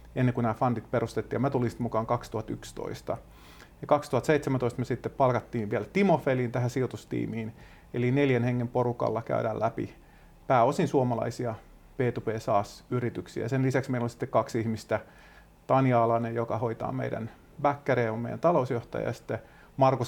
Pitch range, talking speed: 115-140 Hz, 145 wpm